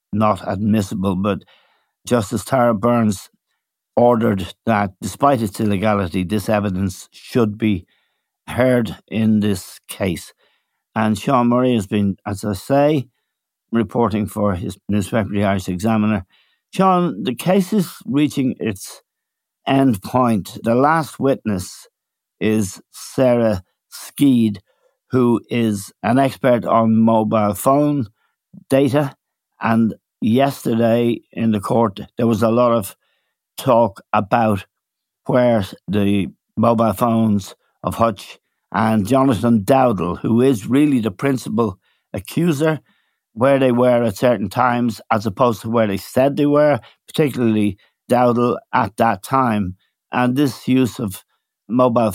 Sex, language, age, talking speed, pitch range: male, English, 60-79, 125 wpm, 105-125 Hz